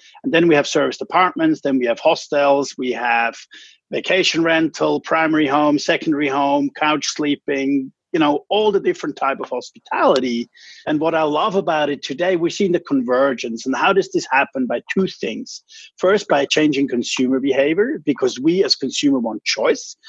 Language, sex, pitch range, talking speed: English, male, 140-200 Hz, 175 wpm